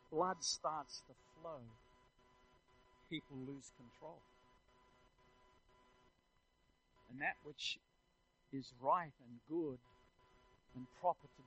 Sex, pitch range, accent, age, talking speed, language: male, 125-135 Hz, American, 50-69, 90 wpm, English